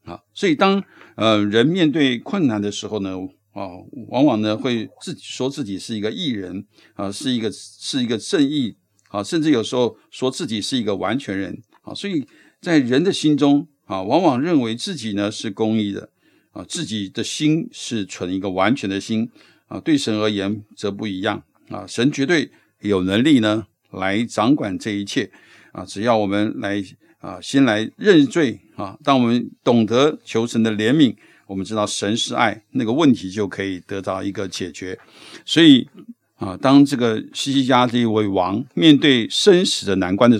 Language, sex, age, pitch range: Chinese, male, 60-79, 100-130 Hz